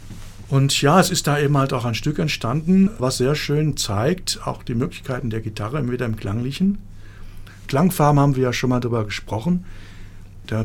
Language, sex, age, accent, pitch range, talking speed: German, male, 60-79, German, 110-150 Hz, 180 wpm